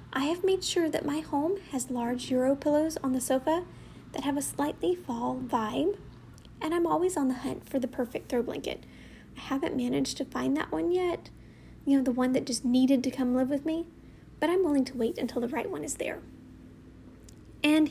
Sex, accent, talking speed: female, American, 210 wpm